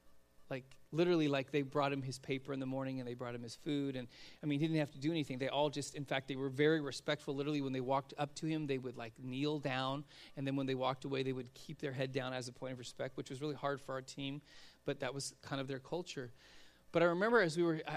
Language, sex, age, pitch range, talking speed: English, male, 30-49, 130-160 Hz, 280 wpm